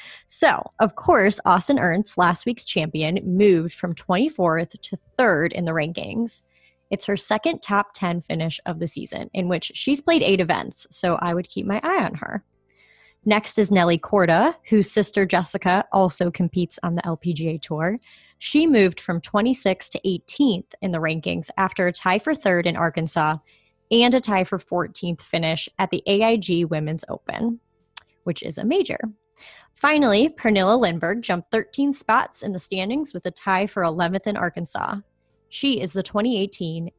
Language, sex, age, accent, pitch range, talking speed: English, female, 20-39, American, 175-220 Hz, 165 wpm